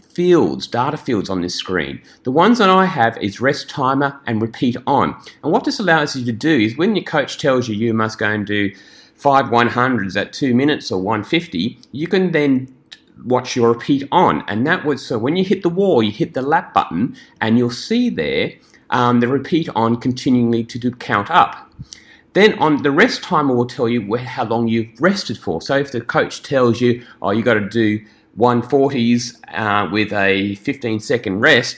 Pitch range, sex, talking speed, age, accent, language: 110-150 Hz, male, 205 wpm, 30-49, Australian, English